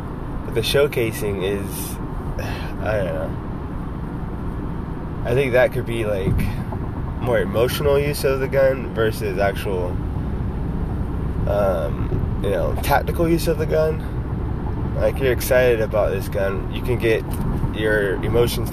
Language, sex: English, male